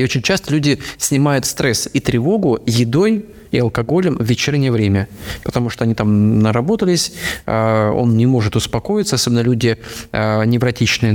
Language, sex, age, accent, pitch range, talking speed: Russian, male, 20-39, native, 115-135 Hz, 135 wpm